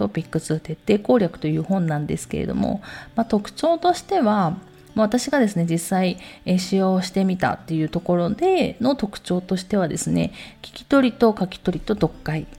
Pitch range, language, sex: 165-230 Hz, Japanese, female